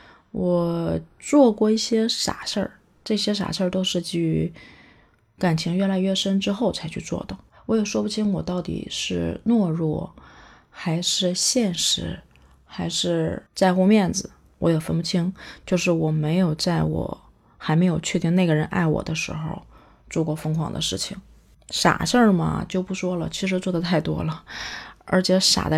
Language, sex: Chinese, female